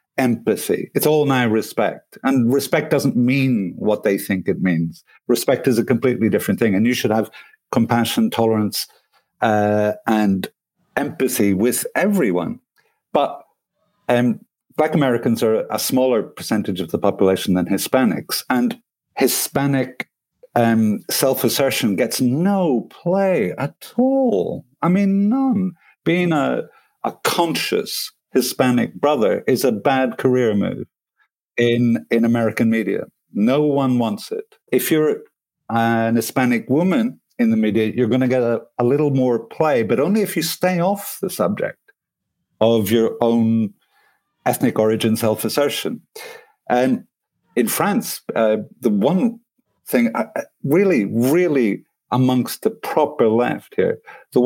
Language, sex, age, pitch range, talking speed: English, male, 50-69, 115-185 Hz, 135 wpm